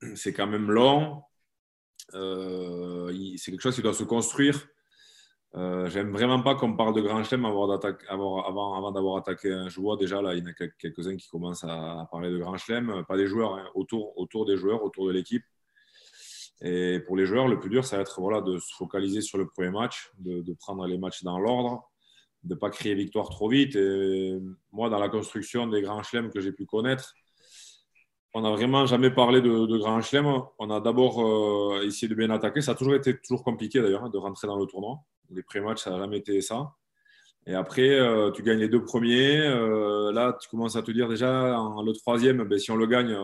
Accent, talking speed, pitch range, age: French, 220 wpm, 95-120 Hz, 20-39